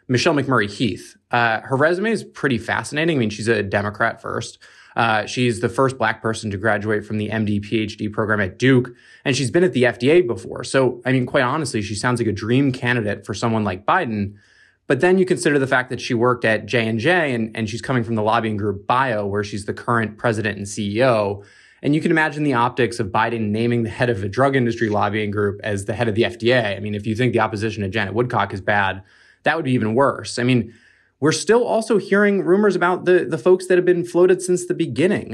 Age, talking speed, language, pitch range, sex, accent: 20-39, 230 wpm, English, 110-135 Hz, male, American